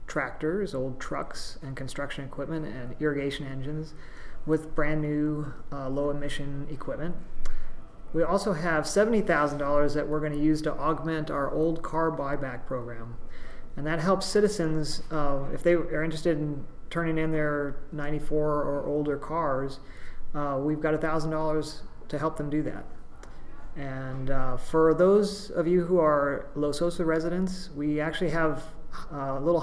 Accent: American